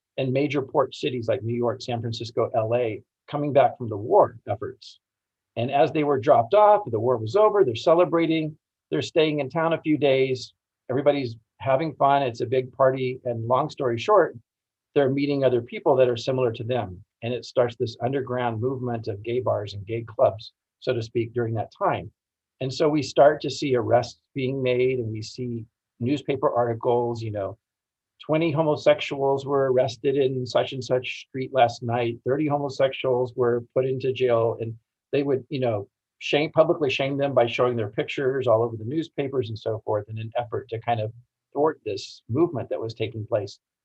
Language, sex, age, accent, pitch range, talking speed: English, male, 40-59, American, 115-140 Hz, 190 wpm